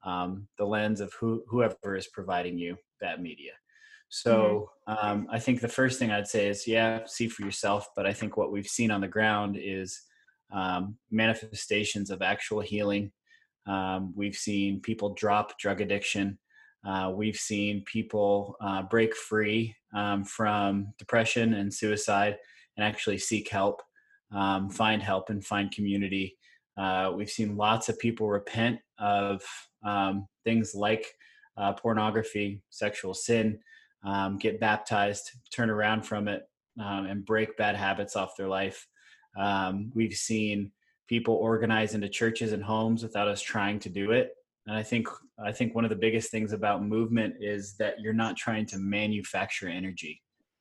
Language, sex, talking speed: English, male, 160 wpm